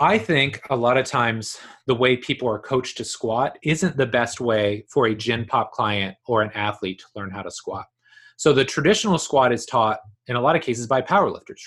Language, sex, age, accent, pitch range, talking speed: English, male, 30-49, American, 110-140 Hz, 220 wpm